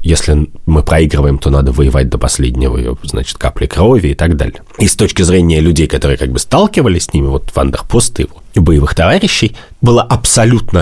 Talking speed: 175 wpm